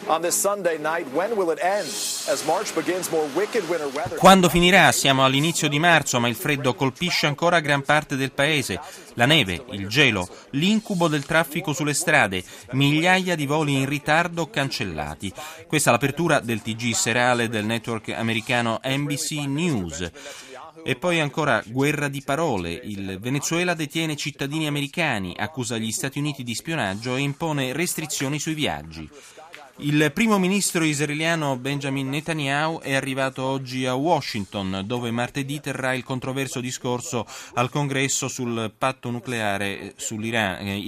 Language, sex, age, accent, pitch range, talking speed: Italian, male, 30-49, native, 115-150 Hz, 125 wpm